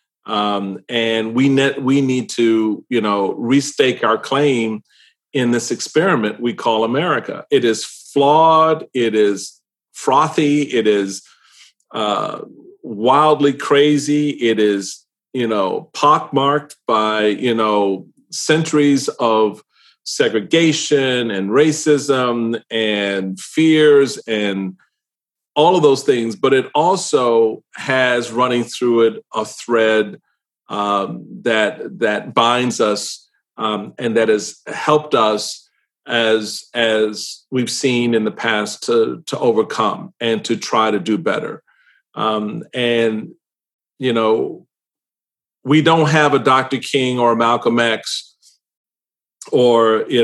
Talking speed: 120 wpm